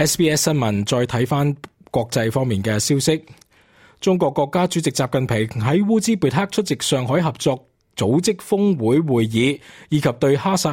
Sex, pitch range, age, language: male, 120-165 Hz, 20-39, Chinese